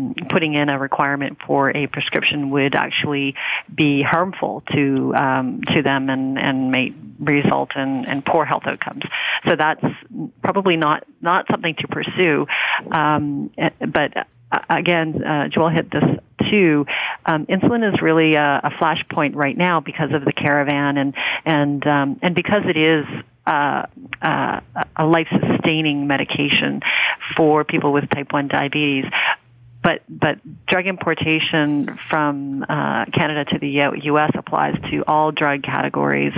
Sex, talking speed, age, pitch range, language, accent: female, 145 wpm, 40-59, 140-160 Hz, English, American